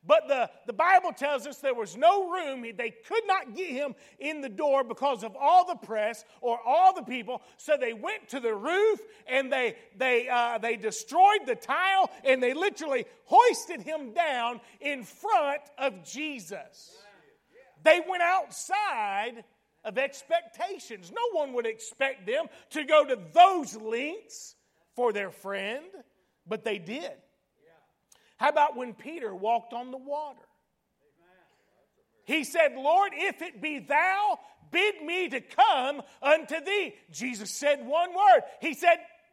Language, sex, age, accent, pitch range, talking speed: English, male, 40-59, American, 255-380 Hz, 150 wpm